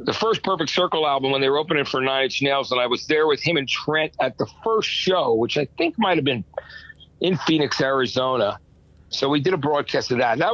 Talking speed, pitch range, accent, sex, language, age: 240 wpm, 130-165 Hz, American, male, English, 50-69